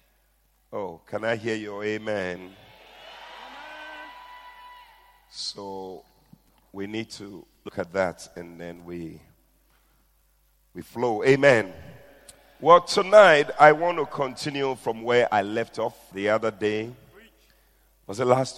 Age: 40-59